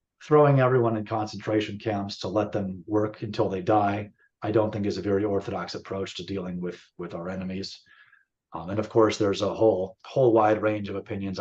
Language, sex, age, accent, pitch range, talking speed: English, male, 30-49, American, 100-115 Hz, 200 wpm